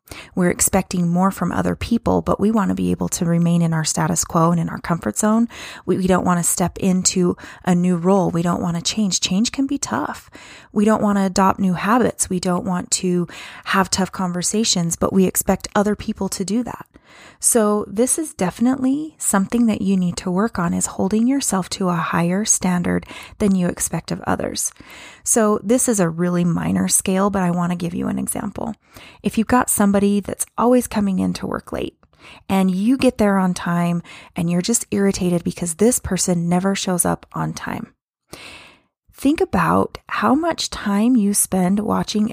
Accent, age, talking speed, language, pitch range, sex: American, 20-39, 195 wpm, English, 180-225 Hz, female